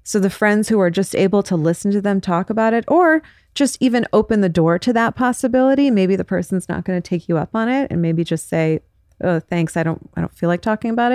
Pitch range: 160-190 Hz